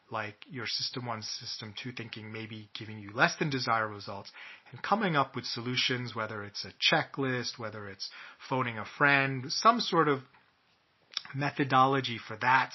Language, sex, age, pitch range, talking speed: English, male, 30-49, 110-135 Hz, 160 wpm